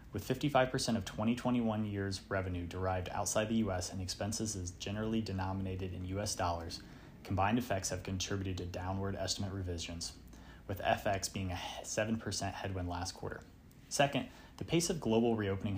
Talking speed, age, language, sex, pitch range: 150 wpm, 30-49, English, male, 90-115 Hz